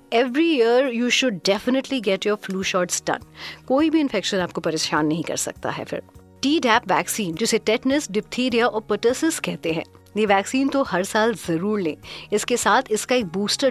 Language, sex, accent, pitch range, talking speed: Hindi, female, native, 190-250 Hz, 55 wpm